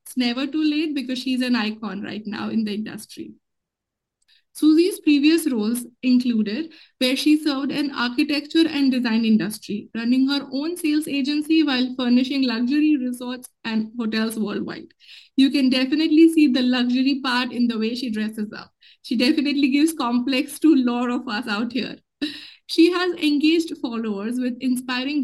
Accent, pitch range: Indian, 240-300 Hz